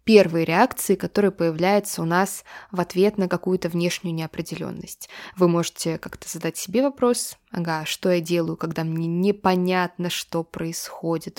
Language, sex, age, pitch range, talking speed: Russian, female, 20-39, 175-210 Hz, 140 wpm